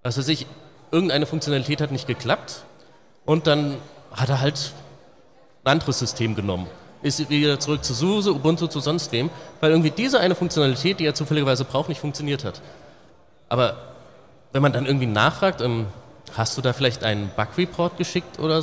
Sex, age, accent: male, 30-49, German